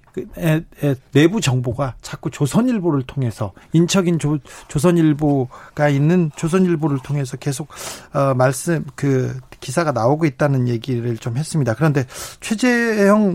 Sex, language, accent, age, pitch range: male, Korean, native, 40-59, 130-195 Hz